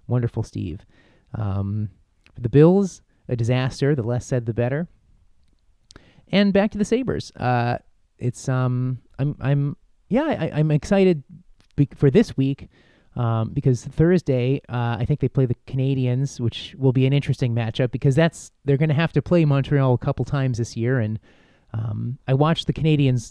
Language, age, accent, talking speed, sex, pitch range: English, 30-49, American, 160 wpm, male, 115-150 Hz